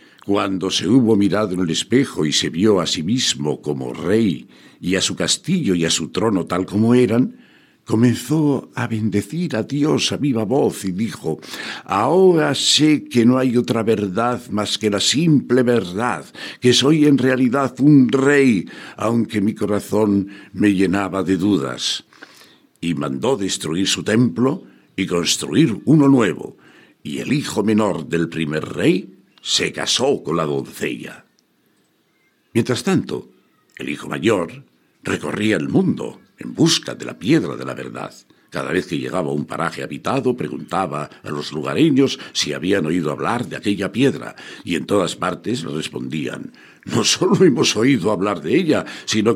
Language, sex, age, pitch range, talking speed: English, male, 60-79, 95-130 Hz, 160 wpm